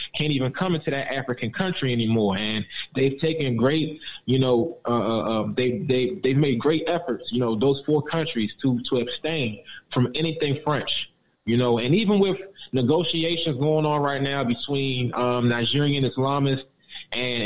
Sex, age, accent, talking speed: male, 20-39, American, 165 wpm